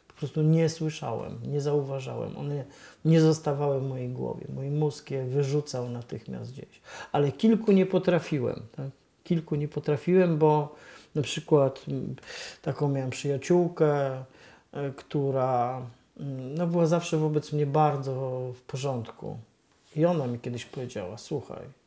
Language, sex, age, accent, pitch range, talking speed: Polish, male, 40-59, native, 135-160 Hz, 125 wpm